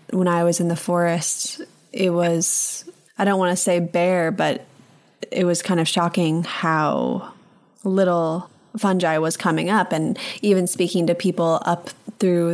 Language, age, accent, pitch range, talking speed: English, 20-39, American, 170-195 Hz, 160 wpm